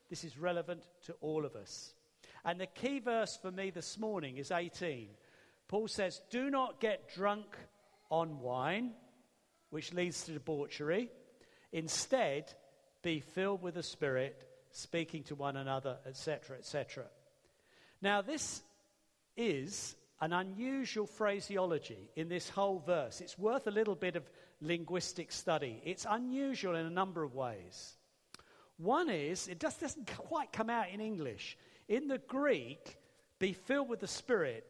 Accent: British